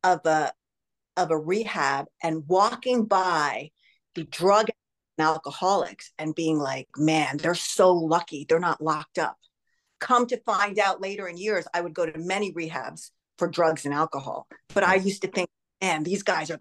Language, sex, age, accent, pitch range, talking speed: English, female, 50-69, American, 165-225 Hz, 175 wpm